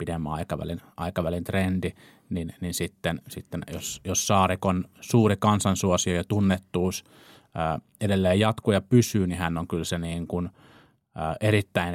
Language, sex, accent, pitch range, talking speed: Finnish, male, native, 90-110 Hz, 145 wpm